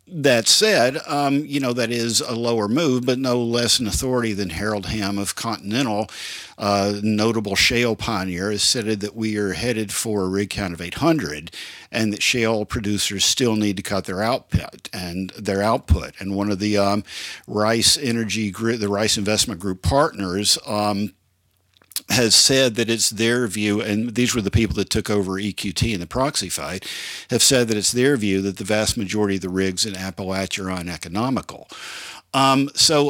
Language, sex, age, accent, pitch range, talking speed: English, male, 50-69, American, 100-120 Hz, 185 wpm